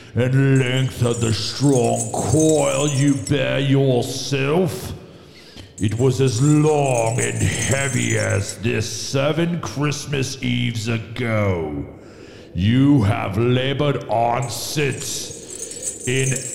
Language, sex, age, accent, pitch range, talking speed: English, male, 50-69, American, 105-135 Hz, 100 wpm